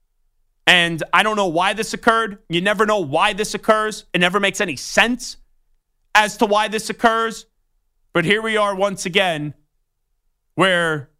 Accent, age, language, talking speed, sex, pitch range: American, 30-49, English, 160 wpm, male, 175-220 Hz